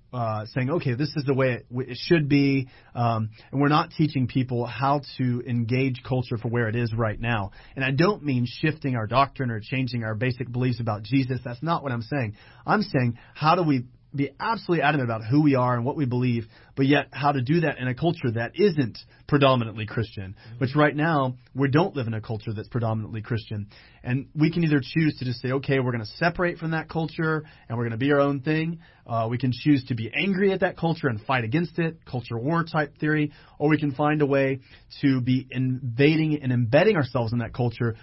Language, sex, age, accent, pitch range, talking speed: English, male, 30-49, American, 120-150 Hz, 225 wpm